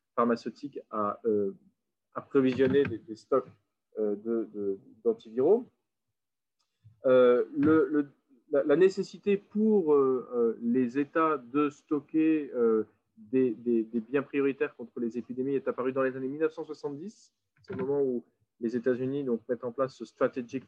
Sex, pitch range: male, 115-145 Hz